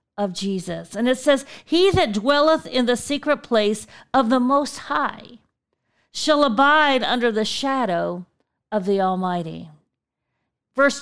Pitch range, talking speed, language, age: 215-280 Hz, 135 wpm, English, 50-69